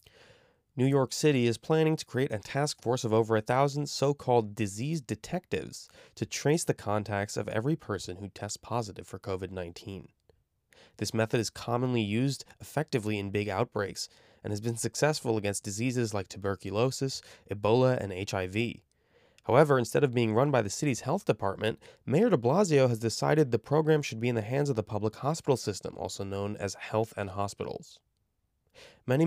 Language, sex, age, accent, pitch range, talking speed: English, male, 20-39, American, 110-145 Hz, 170 wpm